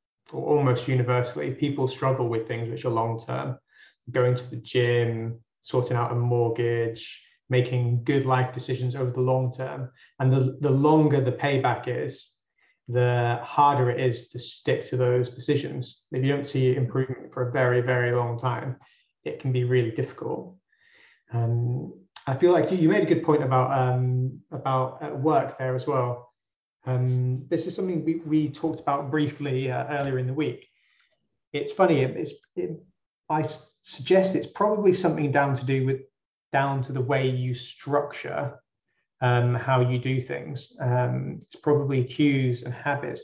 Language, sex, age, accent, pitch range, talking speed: English, male, 30-49, British, 125-145 Hz, 170 wpm